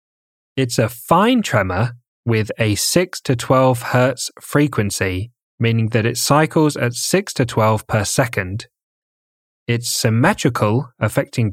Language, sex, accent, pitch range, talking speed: English, male, British, 110-140 Hz, 125 wpm